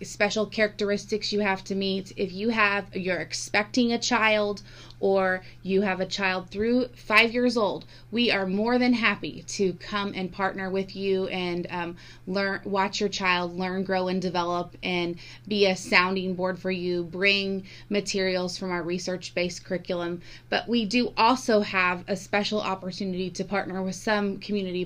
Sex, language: female, English